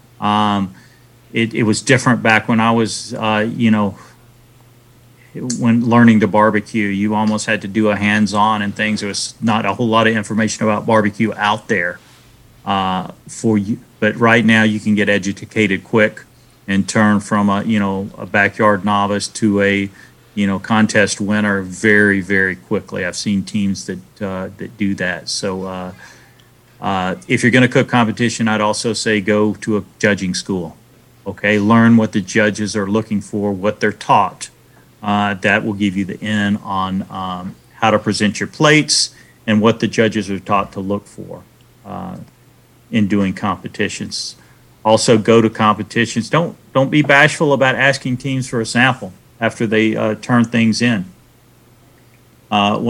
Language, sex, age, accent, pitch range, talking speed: English, male, 40-59, American, 100-115 Hz, 170 wpm